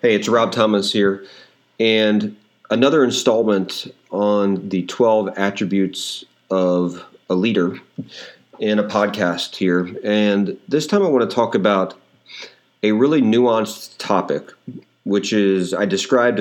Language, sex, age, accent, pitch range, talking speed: English, male, 40-59, American, 95-110 Hz, 130 wpm